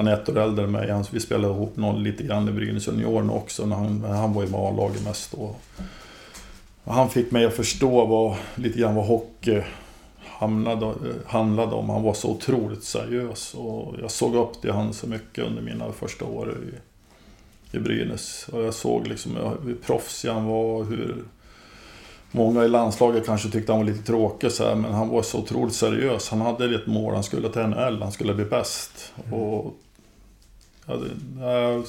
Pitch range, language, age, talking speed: 105-115 Hz, Swedish, 20-39, 180 wpm